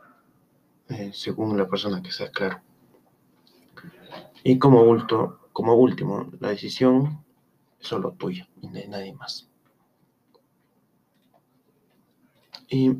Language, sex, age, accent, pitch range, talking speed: Spanish, male, 30-49, Mexican, 105-130 Hz, 95 wpm